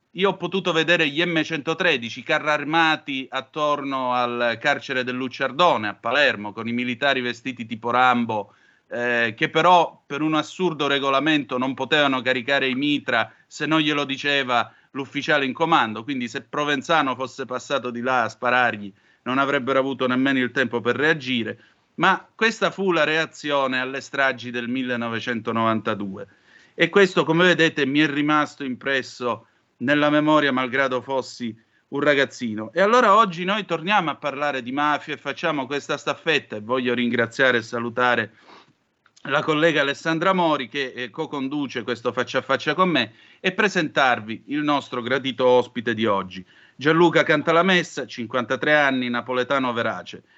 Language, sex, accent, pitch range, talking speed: Italian, male, native, 125-155 Hz, 150 wpm